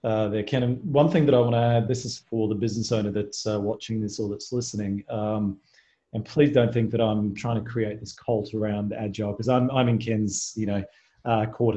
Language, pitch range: English, 105-125 Hz